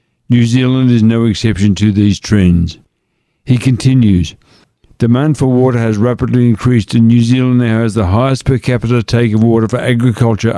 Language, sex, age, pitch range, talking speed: English, male, 60-79, 105-125 Hz, 170 wpm